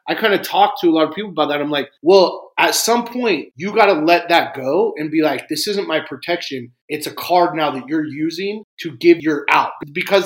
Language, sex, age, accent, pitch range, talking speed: English, male, 30-49, American, 155-235 Hz, 245 wpm